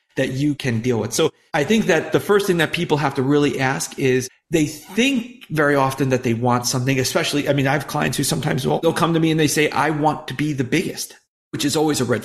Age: 40-59